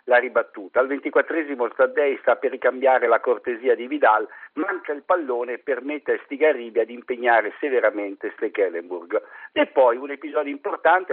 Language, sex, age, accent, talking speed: Italian, male, 50-69, native, 150 wpm